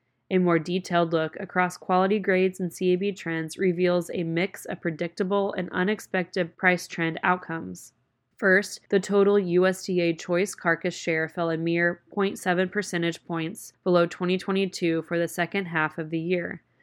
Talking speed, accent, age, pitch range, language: 150 wpm, American, 20-39, 165-185 Hz, English